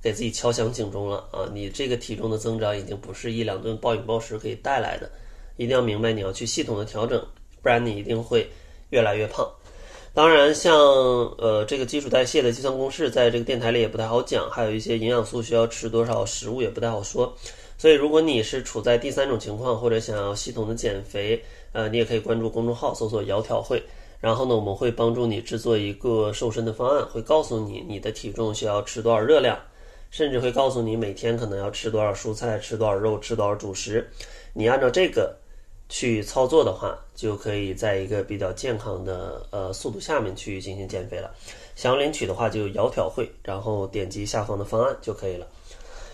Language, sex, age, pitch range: Chinese, male, 20-39, 105-120 Hz